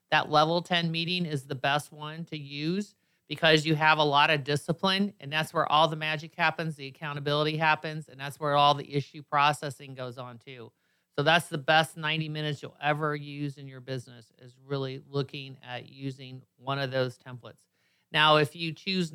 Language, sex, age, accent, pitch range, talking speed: English, male, 40-59, American, 140-170 Hz, 195 wpm